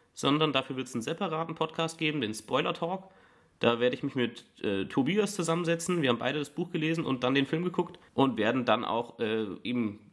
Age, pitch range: 30-49, 120-165 Hz